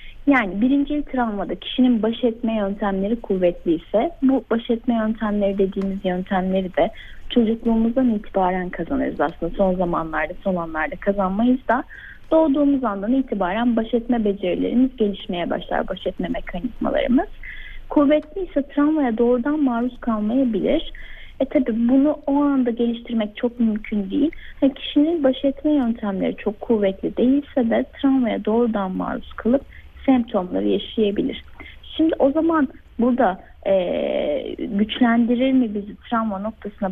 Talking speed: 125 wpm